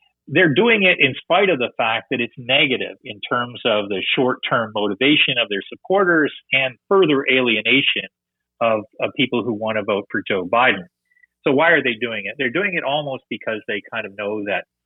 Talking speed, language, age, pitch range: 200 wpm, English, 40-59, 105-130 Hz